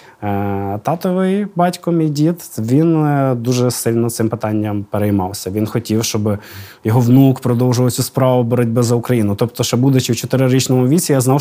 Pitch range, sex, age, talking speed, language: 110-145 Hz, male, 20-39, 155 wpm, Ukrainian